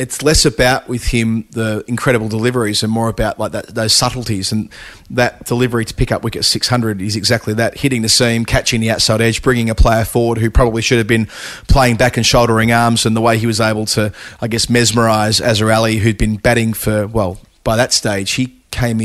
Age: 30-49